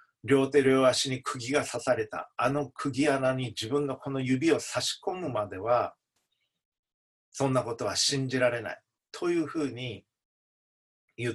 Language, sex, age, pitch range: Japanese, male, 40-59, 110-145 Hz